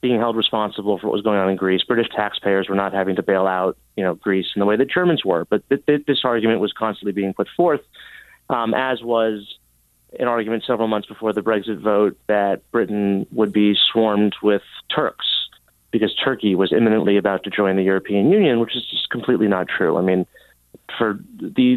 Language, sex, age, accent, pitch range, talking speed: English, male, 30-49, American, 95-115 Hz, 200 wpm